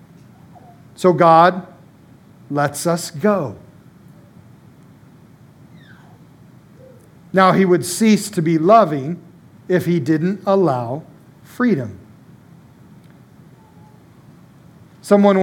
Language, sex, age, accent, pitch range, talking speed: English, male, 50-69, American, 145-195 Hz, 70 wpm